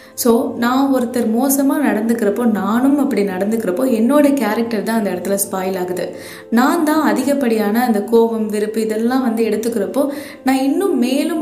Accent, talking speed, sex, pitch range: native, 140 wpm, female, 195-255 Hz